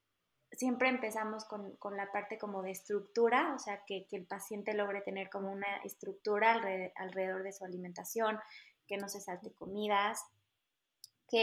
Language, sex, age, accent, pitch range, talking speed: Spanish, female, 20-39, Mexican, 195-225 Hz, 155 wpm